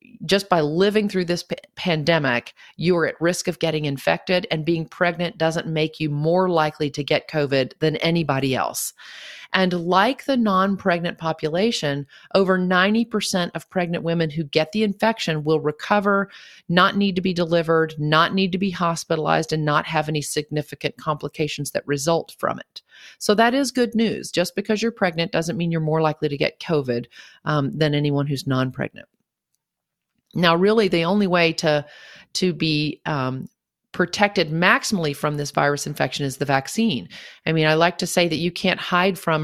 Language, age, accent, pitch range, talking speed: English, 40-59, American, 155-185 Hz, 180 wpm